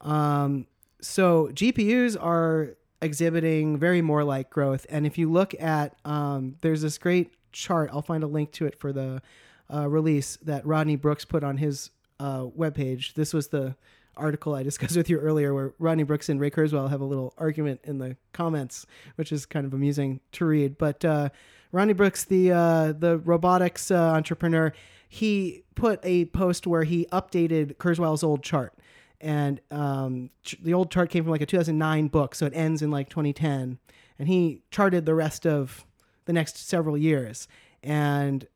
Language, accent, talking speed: English, American, 175 wpm